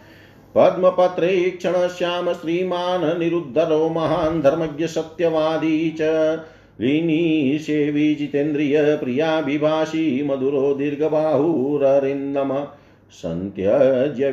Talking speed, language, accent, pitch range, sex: 70 wpm, Hindi, native, 125-160 Hz, male